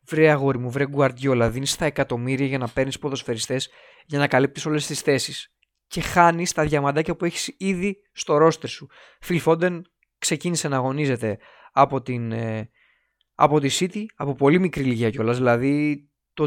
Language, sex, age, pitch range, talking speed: Greek, male, 20-39, 130-170 Hz, 155 wpm